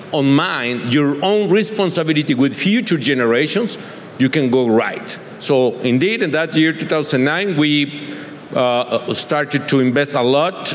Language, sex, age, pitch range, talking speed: English, male, 50-69, 135-160 Hz, 140 wpm